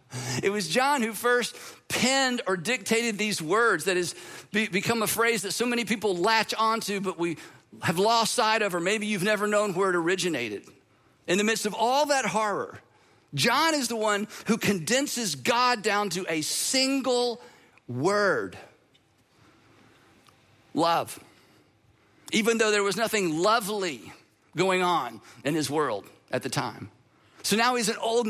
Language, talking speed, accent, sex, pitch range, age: English, 155 wpm, American, male, 195-230 Hz, 50-69